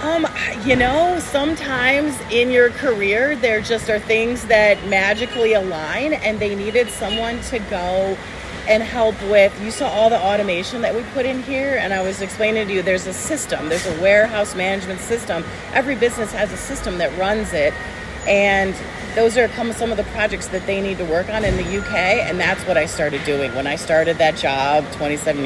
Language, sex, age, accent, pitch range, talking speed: English, female, 40-59, American, 185-235 Hz, 195 wpm